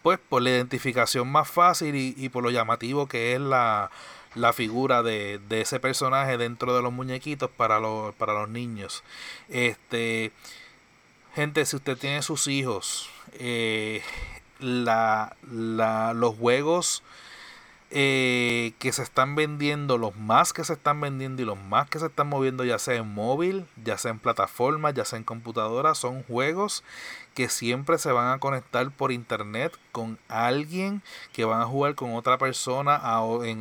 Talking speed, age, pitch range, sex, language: 160 wpm, 30-49, 120-145 Hz, male, Spanish